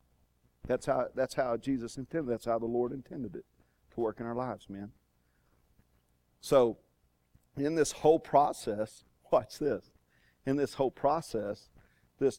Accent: American